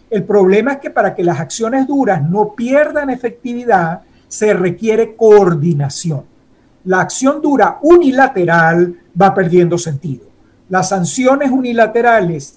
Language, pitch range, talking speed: Spanish, 175-235 Hz, 120 wpm